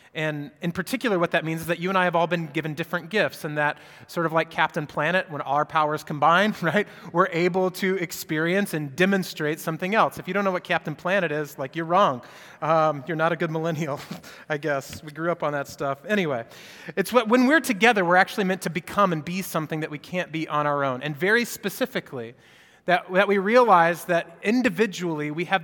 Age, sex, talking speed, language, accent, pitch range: 30-49, male, 220 wpm, English, American, 155-190 Hz